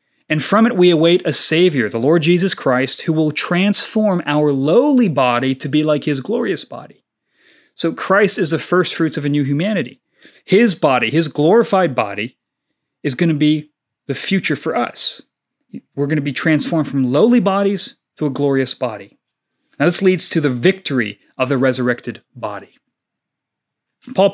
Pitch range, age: 145-200 Hz, 30-49